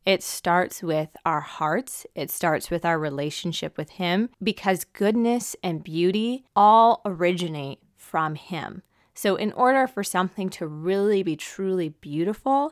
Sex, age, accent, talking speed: female, 20-39, American, 140 wpm